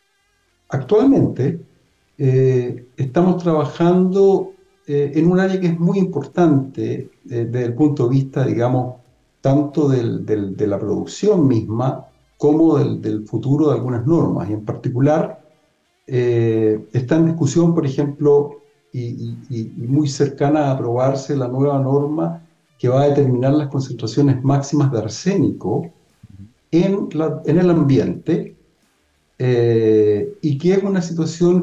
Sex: male